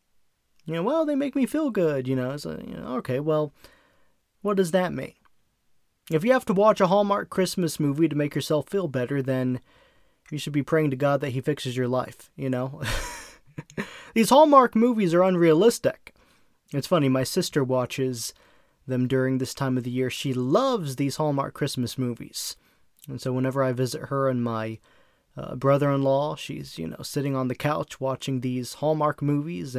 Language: English